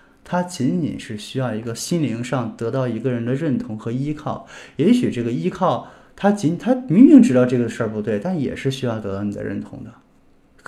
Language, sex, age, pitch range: Chinese, male, 20-39, 110-155 Hz